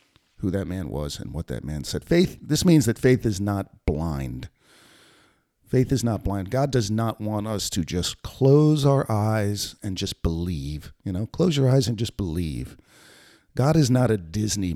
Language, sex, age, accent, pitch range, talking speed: English, male, 50-69, American, 100-125 Hz, 190 wpm